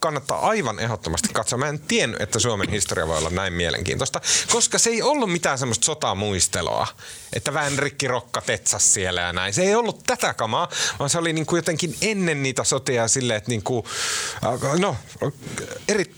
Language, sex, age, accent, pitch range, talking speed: Finnish, male, 30-49, native, 100-145 Hz, 180 wpm